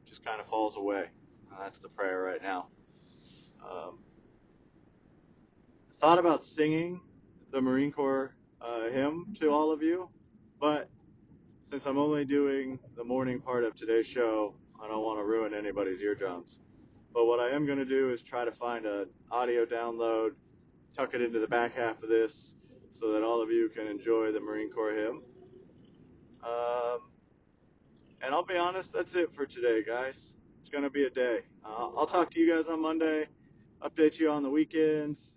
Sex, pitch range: male, 115-145 Hz